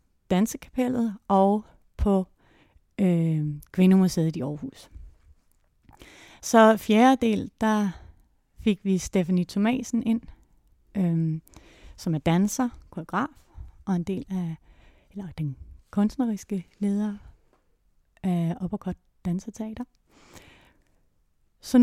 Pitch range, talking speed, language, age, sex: 170-220 Hz, 90 wpm, Danish, 30-49, female